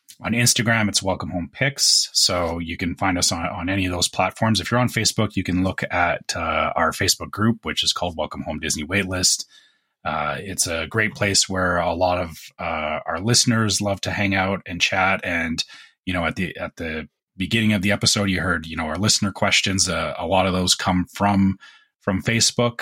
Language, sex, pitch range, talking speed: English, male, 90-105 Hz, 215 wpm